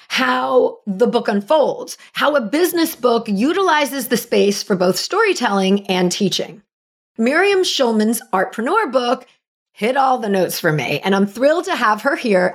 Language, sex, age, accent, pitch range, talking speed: English, female, 40-59, American, 190-305 Hz, 160 wpm